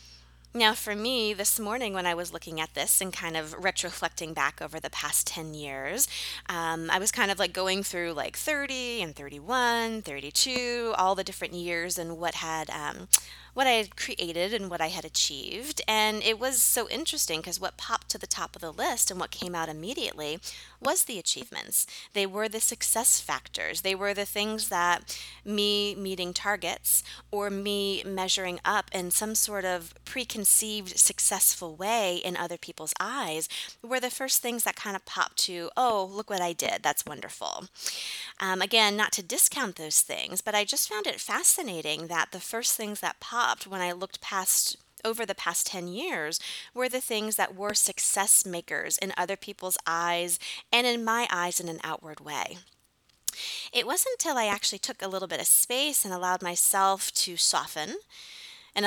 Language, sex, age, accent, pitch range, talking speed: English, female, 20-39, American, 175-220 Hz, 185 wpm